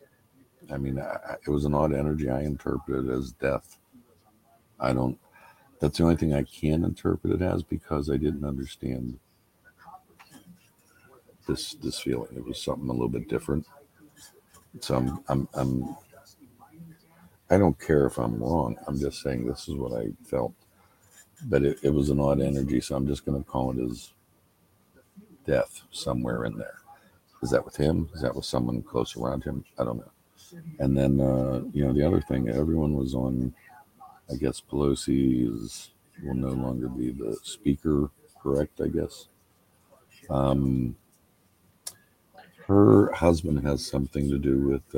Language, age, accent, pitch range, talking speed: English, 60-79, American, 65-80 Hz, 160 wpm